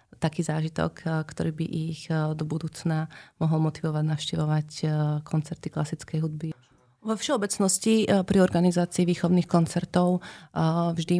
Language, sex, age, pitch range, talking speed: Slovak, female, 30-49, 160-175 Hz, 105 wpm